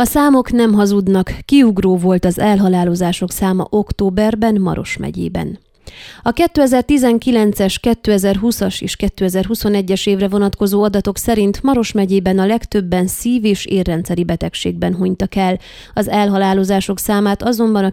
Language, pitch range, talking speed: Hungarian, 185-225 Hz, 120 wpm